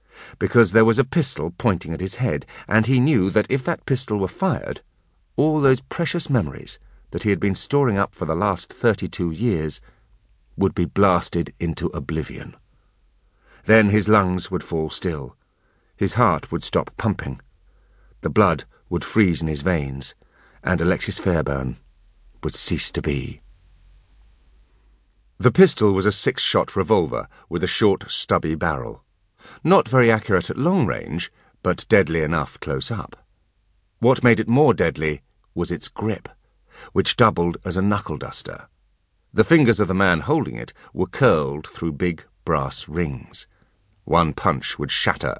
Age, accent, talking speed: 50-69, British, 155 wpm